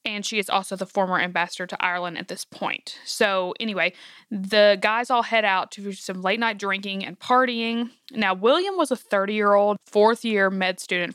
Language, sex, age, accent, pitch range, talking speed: English, female, 20-39, American, 185-230 Hz, 185 wpm